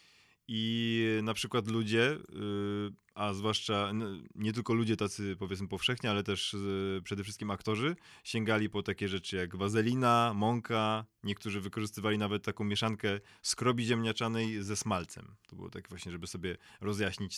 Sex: male